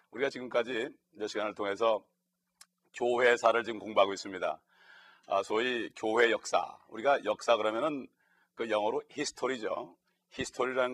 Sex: male